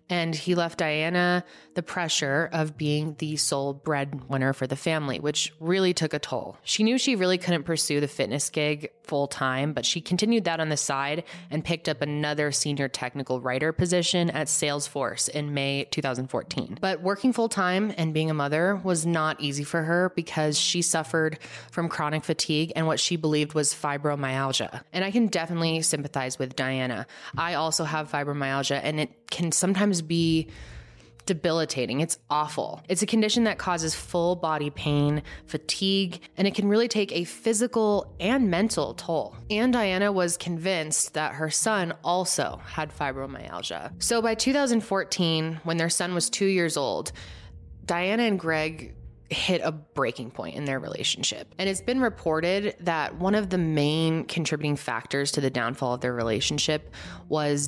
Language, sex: English, female